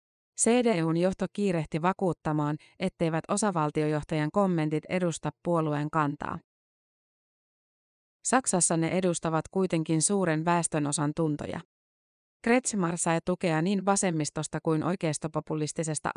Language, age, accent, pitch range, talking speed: Finnish, 30-49, native, 155-185 Hz, 90 wpm